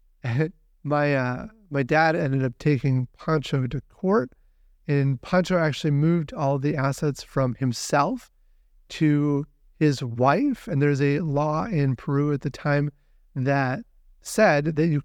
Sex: male